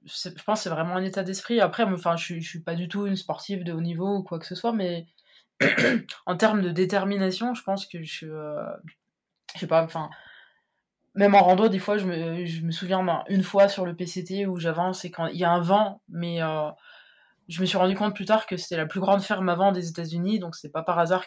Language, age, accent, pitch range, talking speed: French, 20-39, French, 165-200 Hz, 250 wpm